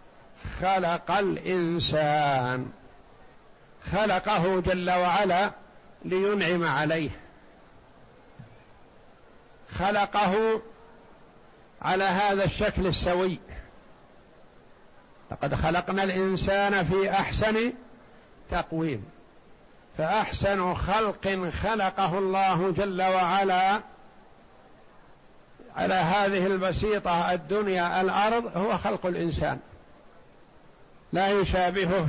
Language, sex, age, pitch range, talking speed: Arabic, male, 60-79, 175-200 Hz, 65 wpm